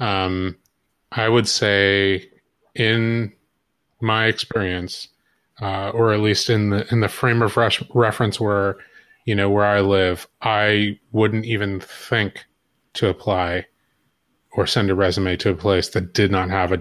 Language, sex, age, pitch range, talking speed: English, male, 30-49, 95-110 Hz, 150 wpm